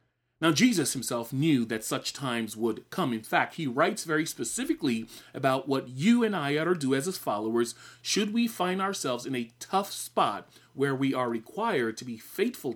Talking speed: 195 wpm